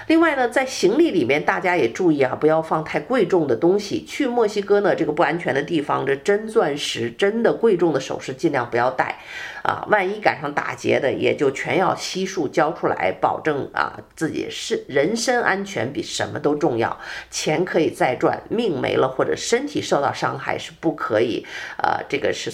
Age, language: 50-69, Chinese